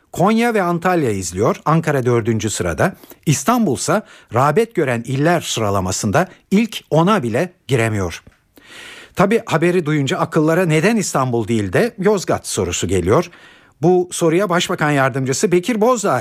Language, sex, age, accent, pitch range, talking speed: Turkish, male, 60-79, native, 120-195 Hz, 120 wpm